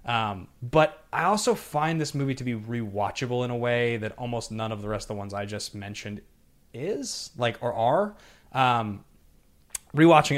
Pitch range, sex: 105-145 Hz, male